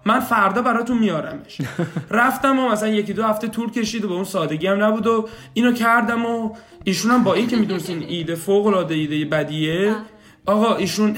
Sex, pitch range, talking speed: male, 155-215 Hz, 190 wpm